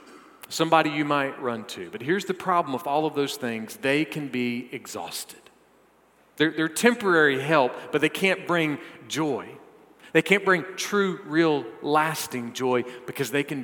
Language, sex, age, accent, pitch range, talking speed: English, male, 40-59, American, 125-165 Hz, 165 wpm